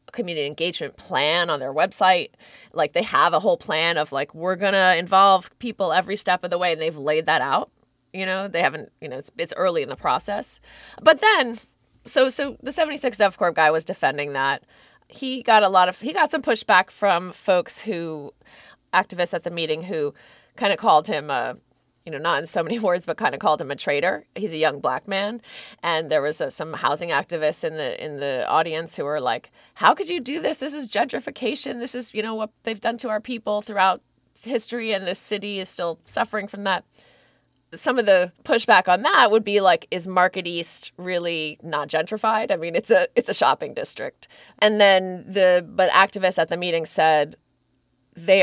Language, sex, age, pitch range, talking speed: English, female, 20-39, 165-225 Hz, 210 wpm